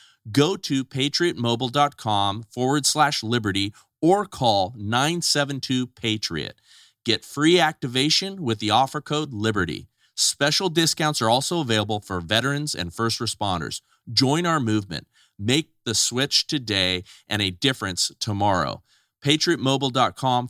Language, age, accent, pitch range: English, 40-59, American, 90-130 Hz